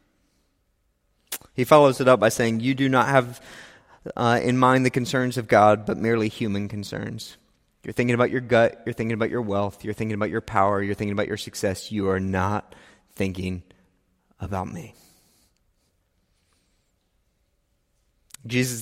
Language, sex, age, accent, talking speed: English, male, 30-49, American, 155 wpm